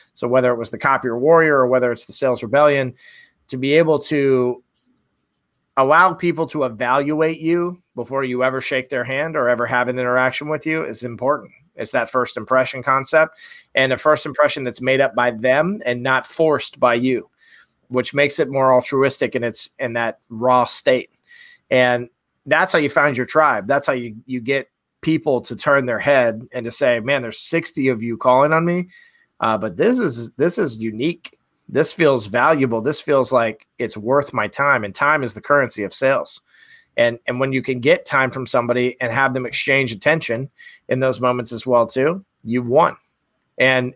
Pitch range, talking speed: 125-150 Hz, 195 wpm